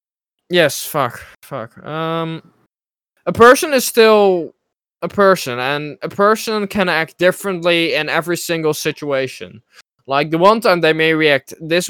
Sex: male